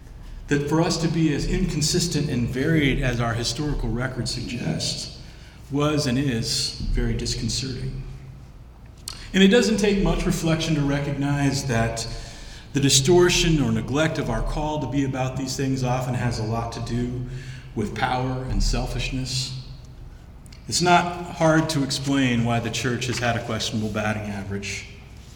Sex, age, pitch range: male, 40-59, 115-145 Hz